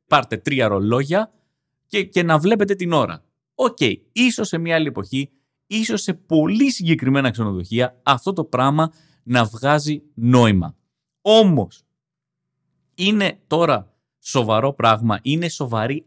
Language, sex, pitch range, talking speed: Greek, male, 110-160 Hz, 125 wpm